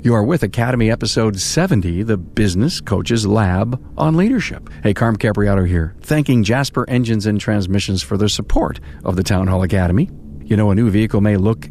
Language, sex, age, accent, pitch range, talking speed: English, male, 50-69, American, 95-120 Hz, 185 wpm